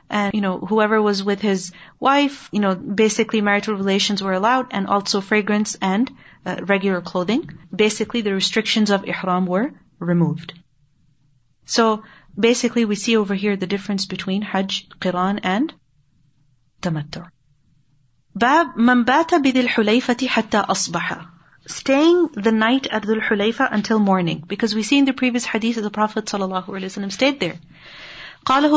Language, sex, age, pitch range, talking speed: English, female, 30-49, 190-240 Hz, 140 wpm